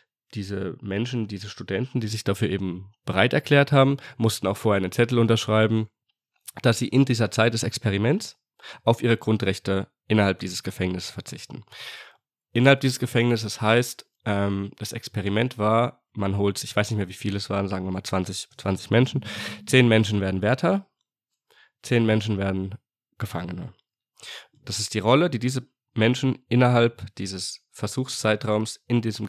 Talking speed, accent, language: 150 wpm, German, German